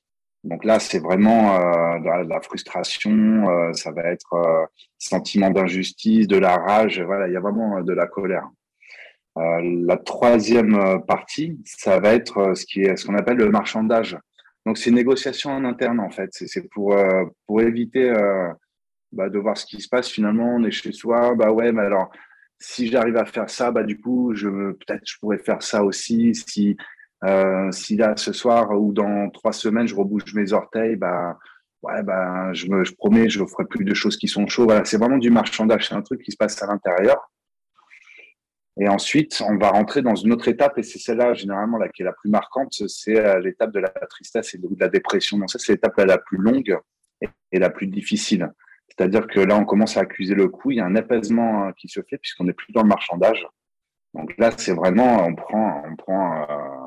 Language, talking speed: French, 215 wpm